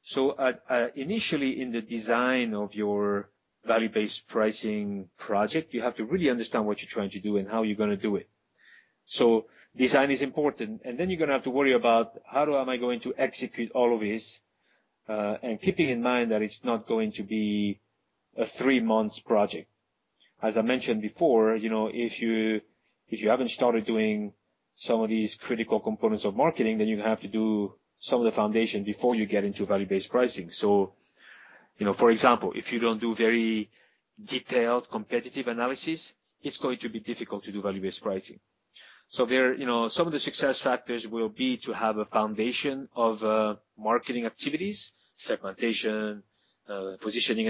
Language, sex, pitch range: English, male, 105-125 Hz